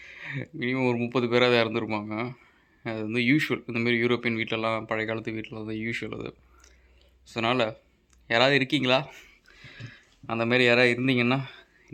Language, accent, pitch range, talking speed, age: English, Indian, 110-125 Hz, 105 wpm, 20-39